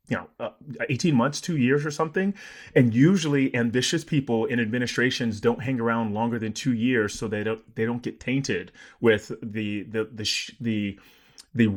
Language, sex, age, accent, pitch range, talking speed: English, male, 30-49, American, 110-135 Hz, 180 wpm